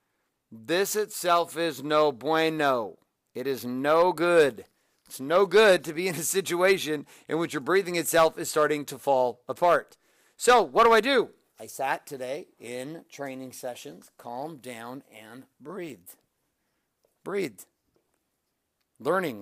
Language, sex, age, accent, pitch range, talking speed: English, male, 50-69, American, 140-180 Hz, 135 wpm